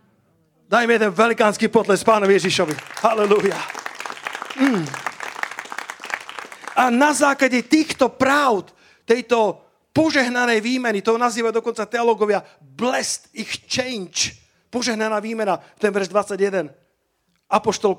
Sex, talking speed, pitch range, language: male, 95 wpm, 185-225 Hz, Slovak